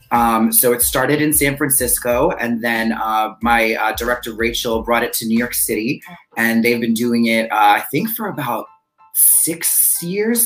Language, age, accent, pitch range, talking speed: English, 30-49, American, 115-140 Hz, 185 wpm